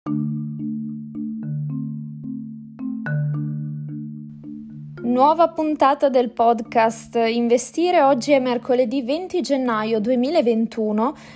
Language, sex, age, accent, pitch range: Italian, female, 20-39, native, 205-275 Hz